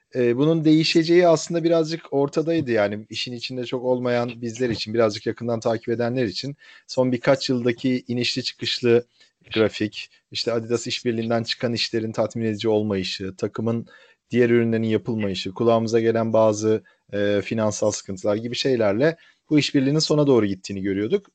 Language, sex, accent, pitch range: Turkish, male, native, 105-125 Hz